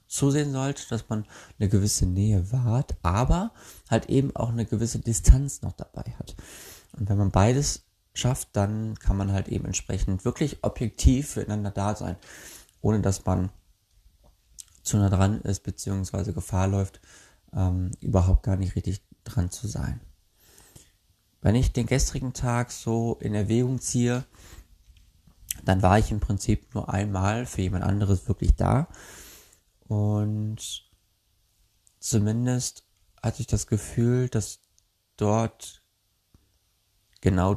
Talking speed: 130 wpm